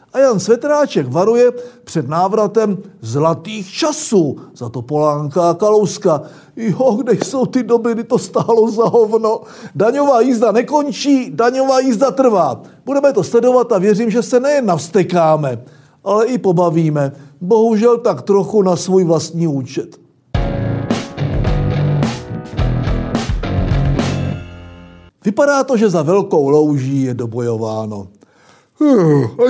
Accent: native